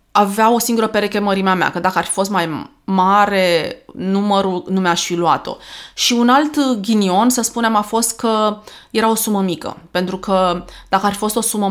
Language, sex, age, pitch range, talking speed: Romanian, female, 20-39, 185-220 Hz, 200 wpm